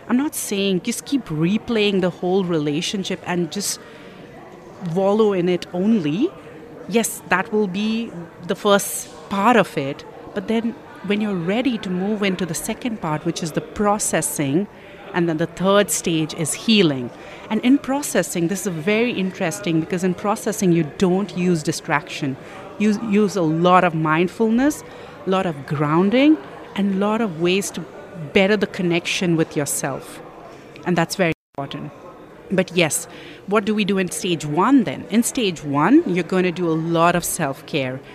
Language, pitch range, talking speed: English, 165-205 Hz, 165 wpm